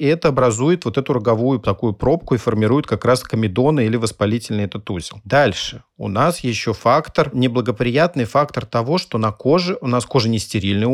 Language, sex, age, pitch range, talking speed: Russian, male, 40-59, 110-140 Hz, 180 wpm